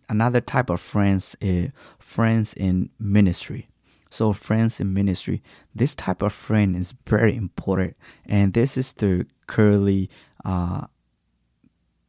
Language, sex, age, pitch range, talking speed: English, male, 20-39, 95-110 Hz, 125 wpm